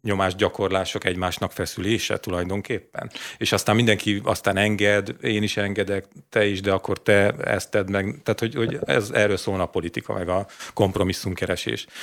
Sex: male